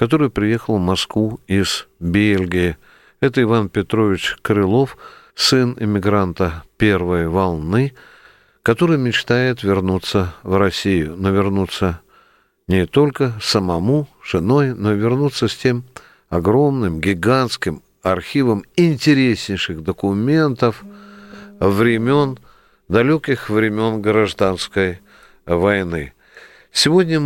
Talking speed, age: 90 wpm, 50-69